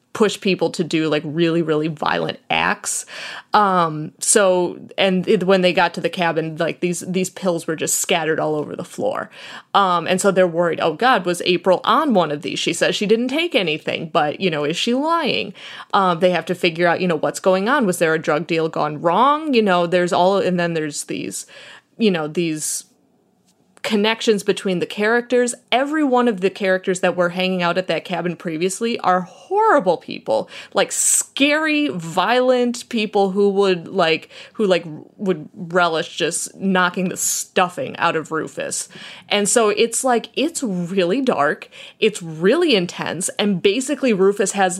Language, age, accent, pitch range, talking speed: English, 30-49, American, 170-215 Hz, 180 wpm